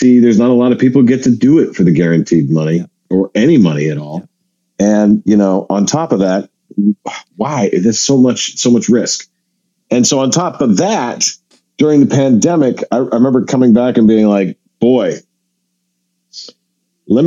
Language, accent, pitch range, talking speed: English, American, 90-115 Hz, 190 wpm